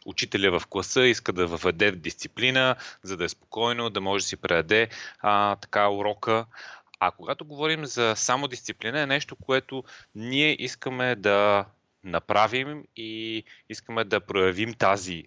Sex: male